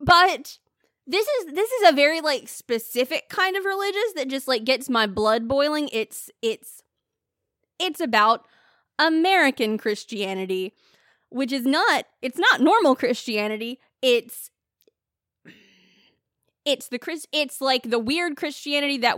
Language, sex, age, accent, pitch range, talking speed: English, female, 20-39, American, 205-285 Hz, 130 wpm